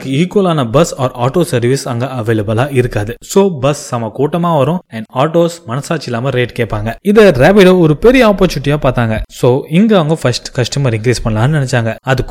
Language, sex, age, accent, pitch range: Tamil, male, 20-39, native, 120-170 Hz